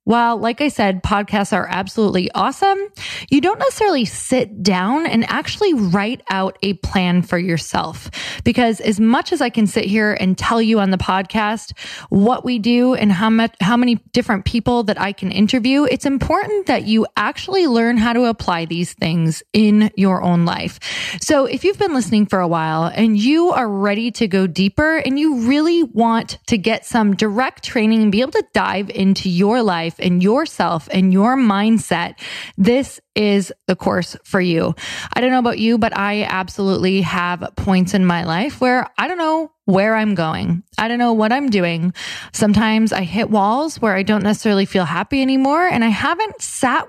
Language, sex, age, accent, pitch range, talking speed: English, female, 20-39, American, 190-240 Hz, 190 wpm